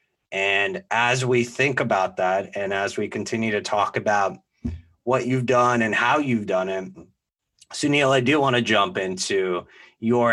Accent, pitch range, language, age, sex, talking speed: American, 100-130 Hz, English, 30-49, male, 170 wpm